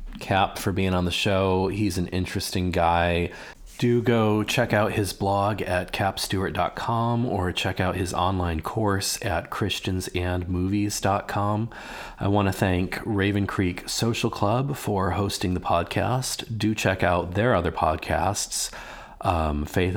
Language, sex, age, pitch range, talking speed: English, male, 40-59, 90-105 Hz, 140 wpm